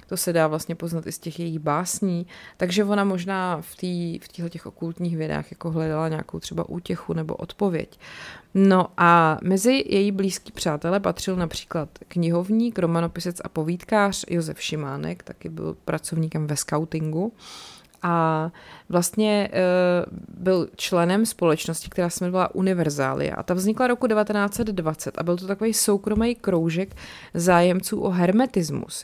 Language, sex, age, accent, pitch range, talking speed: Czech, female, 30-49, native, 165-195 Hz, 140 wpm